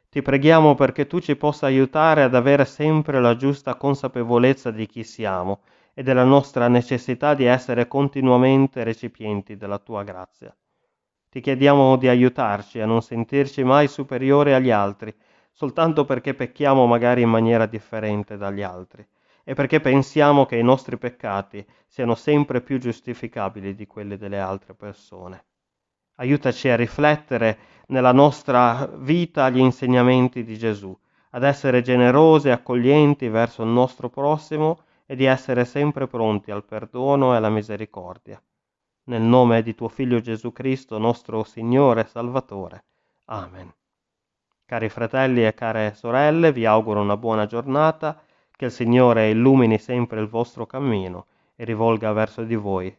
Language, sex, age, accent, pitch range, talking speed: Italian, male, 30-49, native, 110-135 Hz, 145 wpm